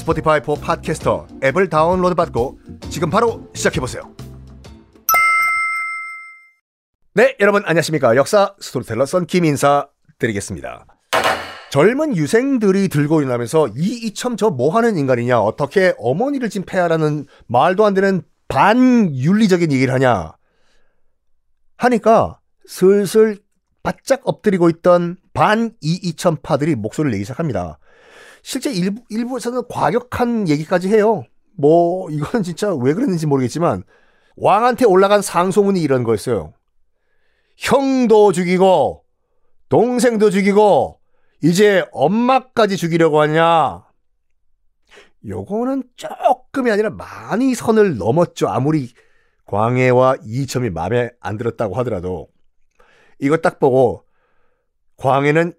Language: Korean